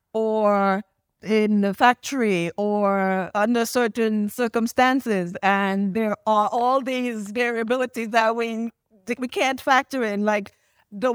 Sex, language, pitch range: female, Spanish, 190-230 Hz